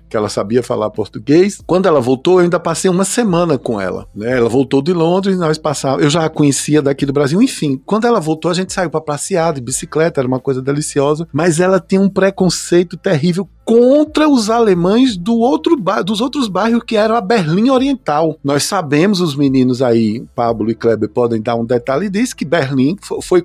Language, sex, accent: Portuguese, male, Brazilian